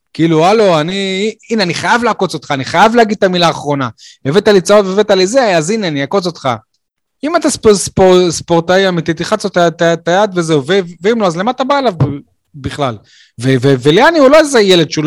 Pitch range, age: 145-205 Hz, 30-49